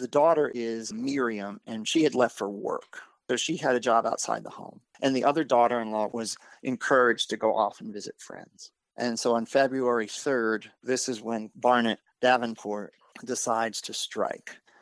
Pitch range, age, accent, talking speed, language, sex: 110-130 Hz, 40-59, American, 180 wpm, English, male